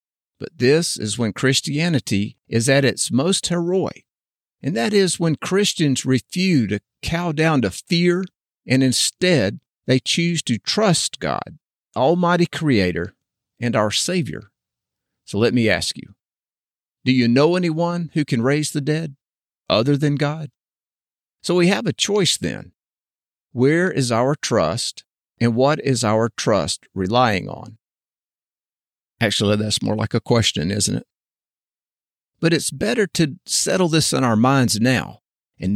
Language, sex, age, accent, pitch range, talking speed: English, male, 50-69, American, 115-160 Hz, 145 wpm